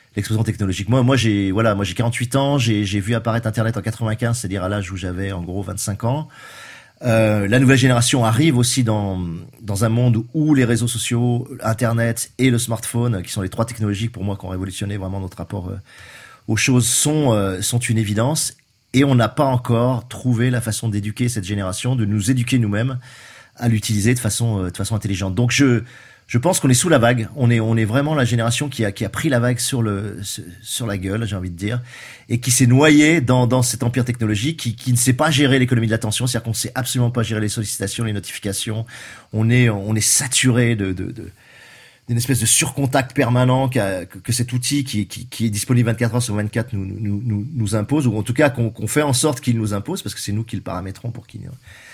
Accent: French